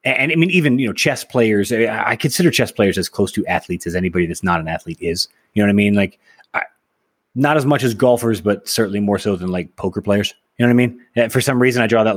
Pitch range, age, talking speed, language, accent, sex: 95-125 Hz, 30-49, 260 wpm, English, American, male